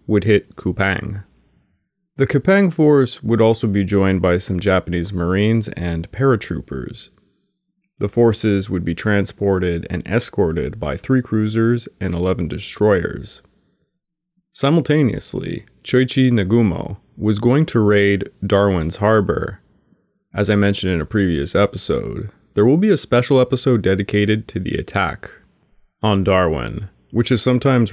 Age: 30-49